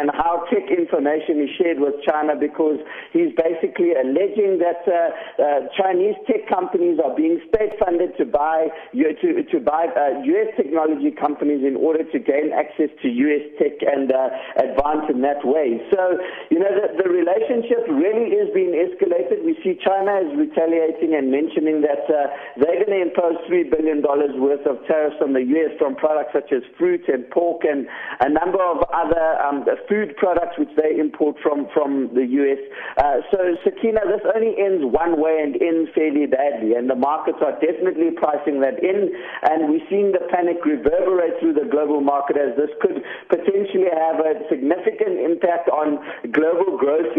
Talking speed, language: 175 wpm, English